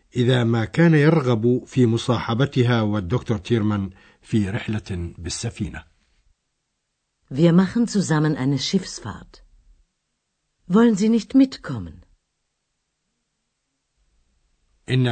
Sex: male